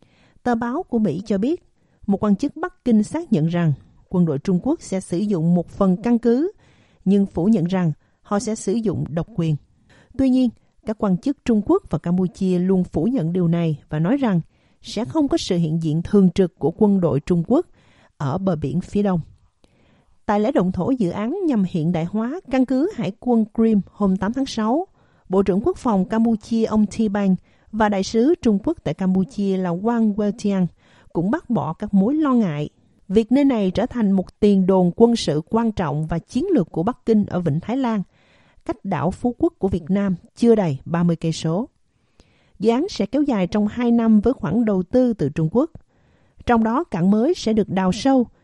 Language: Vietnamese